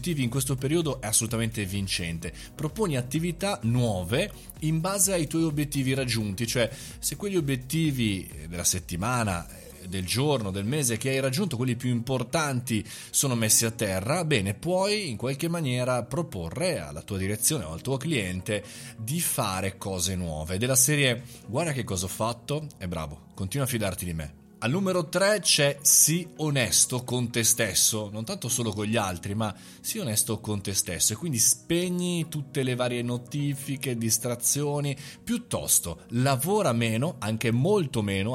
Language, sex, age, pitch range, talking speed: Italian, male, 30-49, 105-145 Hz, 160 wpm